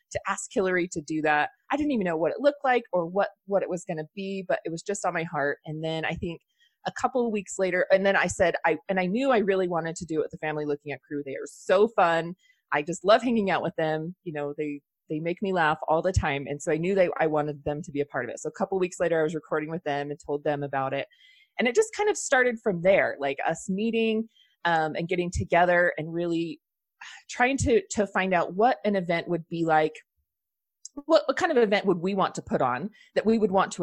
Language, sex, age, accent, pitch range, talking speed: English, female, 30-49, American, 160-230 Hz, 270 wpm